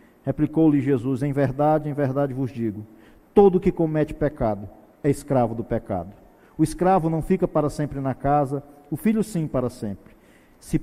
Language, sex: Portuguese, male